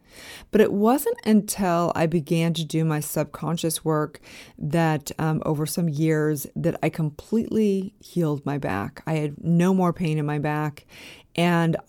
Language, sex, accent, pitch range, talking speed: English, female, American, 155-180 Hz, 155 wpm